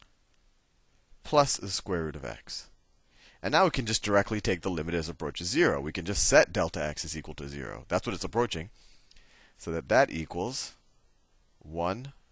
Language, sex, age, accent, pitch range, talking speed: Russian, male, 40-59, American, 80-100 Hz, 185 wpm